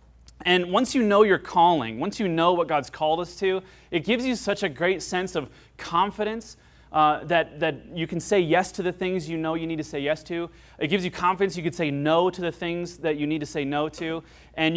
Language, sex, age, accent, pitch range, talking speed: English, male, 30-49, American, 145-180 Hz, 245 wpm